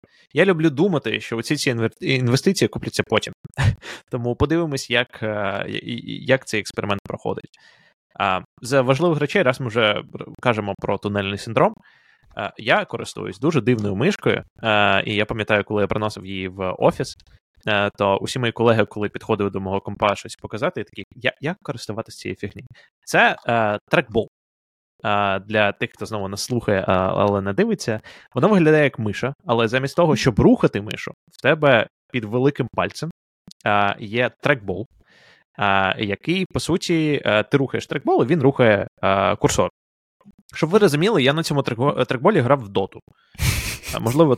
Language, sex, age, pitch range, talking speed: Ukrainian, male, 20-39, 105-150 Hz, 145 wpm